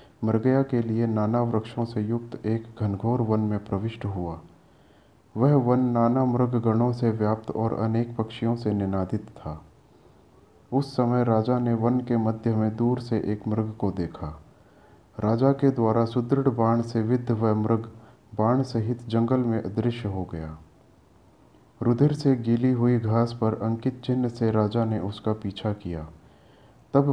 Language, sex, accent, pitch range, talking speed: Hindi, male, native, 105-120 Hz, 155 wpm